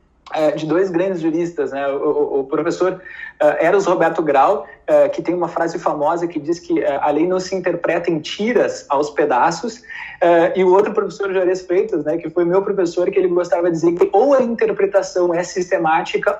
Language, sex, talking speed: Portuguese, male, 200 wpm